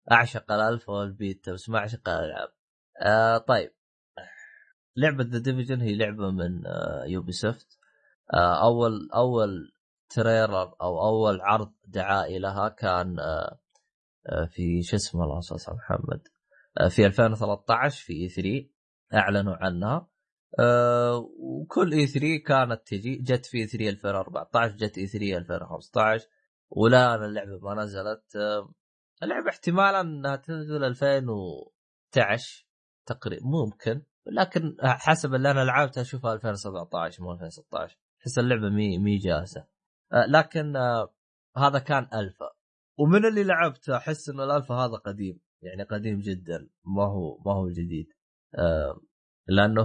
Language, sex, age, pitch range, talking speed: Arabic, male, 20-39, 100-135 Hz, 125 wpm